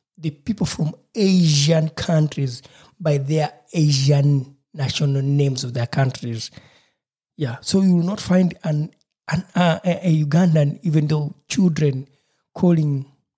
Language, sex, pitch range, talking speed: English, male, 140-175 Hz, 125 wpm